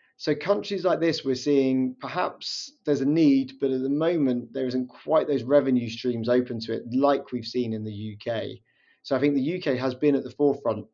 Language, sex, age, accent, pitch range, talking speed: English, male, 20-39, British, 115-135 Hz, 215 wpm